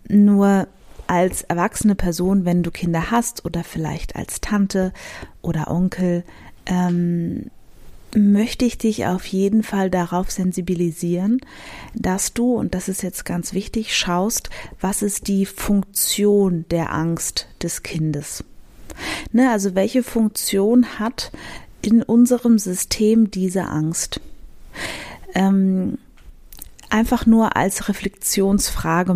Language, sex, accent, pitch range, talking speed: German, female, German, 175-210 Hz, 115 wpm